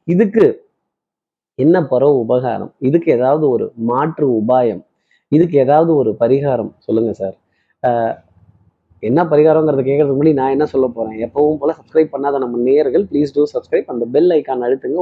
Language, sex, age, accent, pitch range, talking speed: Tamil, male, 20-39, native, 130-175 Hz, 145 wpm